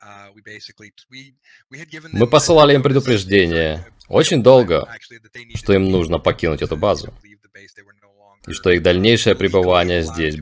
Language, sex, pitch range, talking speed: Russian, male, 90-125 Hz, 105 wpm